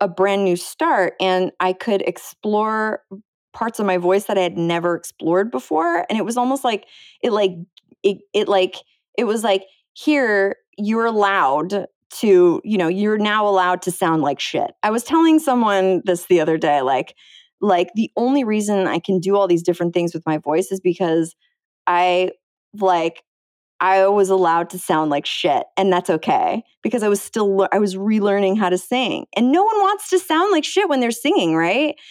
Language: English